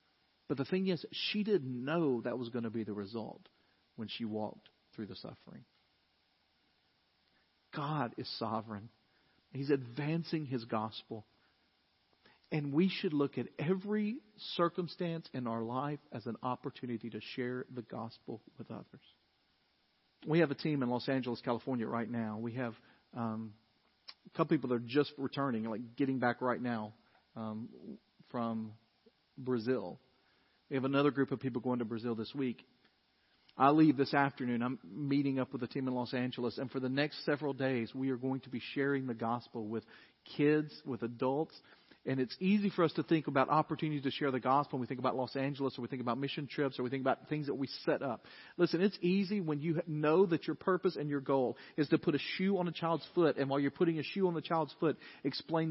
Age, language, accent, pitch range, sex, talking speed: 40-59, English, American, 115-150 Hz, male, 195 wpm